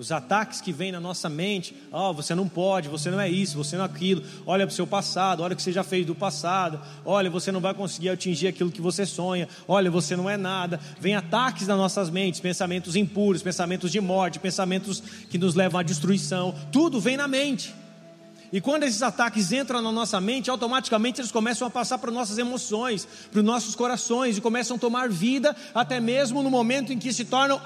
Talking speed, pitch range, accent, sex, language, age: 215 wpm, 185-250 Hz, Brazilian, male, Portuguese, 30-49